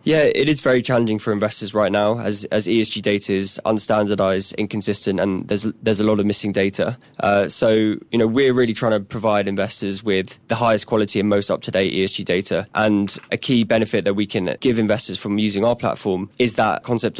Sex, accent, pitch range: male, British, 100-115 Hz